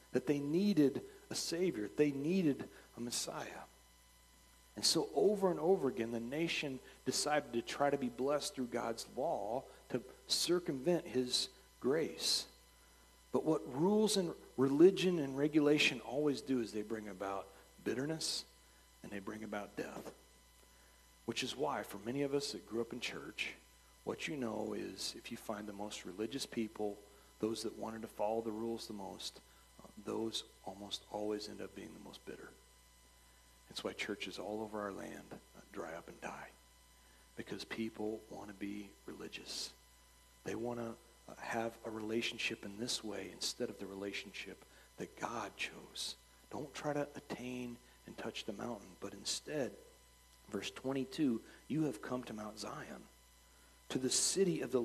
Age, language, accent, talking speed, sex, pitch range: 40-59, English, American, 160 wpm, male, 85-135 Hz